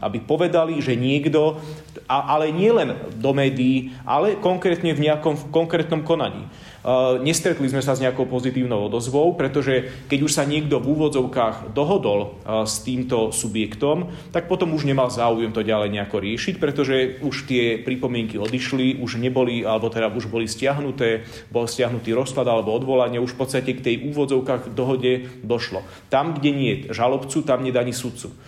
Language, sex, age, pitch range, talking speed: Slovak, male, 30-49, 115-140 Hz, 165 wpm